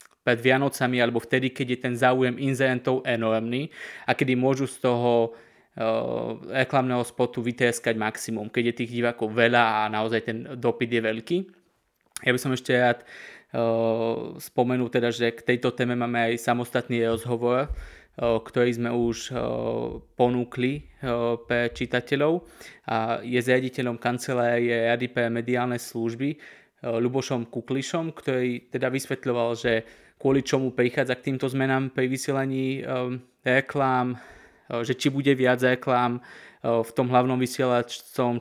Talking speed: 145 wpm